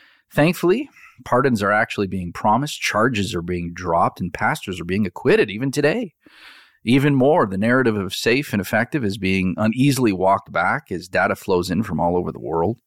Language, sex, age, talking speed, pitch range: English, male, 40-59, 180 wpm, 95-120 Hz